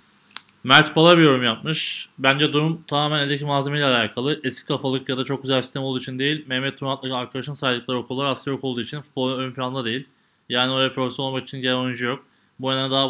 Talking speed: 205 wpm